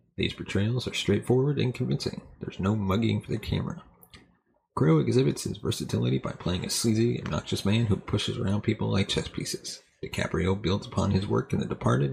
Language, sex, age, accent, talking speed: English, male, 30-49, American, 185 wpm